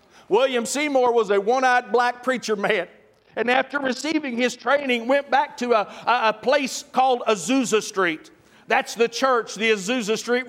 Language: English